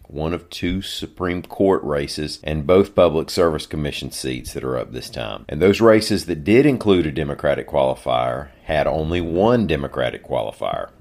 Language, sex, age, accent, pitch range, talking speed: English, male, 40-59, American, 70-85 Hz, 170 wpm